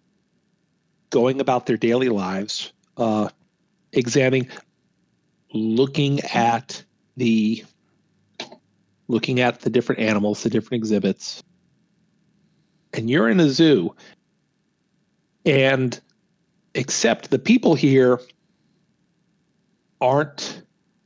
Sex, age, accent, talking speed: male, 50-69, American, 85 wpm